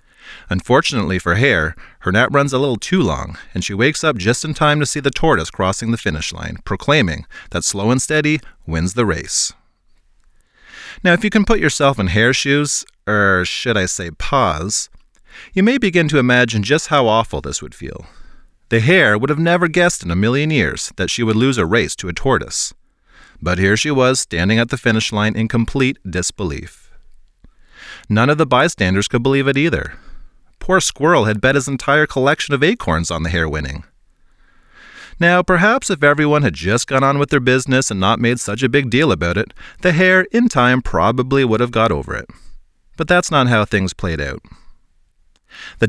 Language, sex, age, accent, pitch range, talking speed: English, male, 30-49, American, 95-140 Hz, 195 wpm